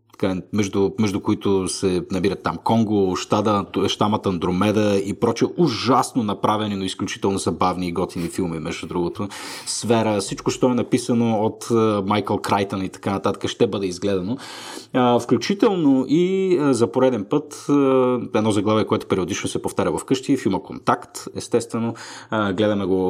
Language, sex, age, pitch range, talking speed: Bulgarian, male, 30-49, 95-120 Hz, 135 wpm